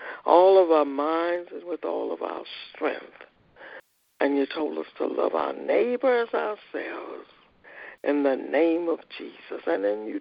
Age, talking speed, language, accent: 60-79, 160 wpm, English, American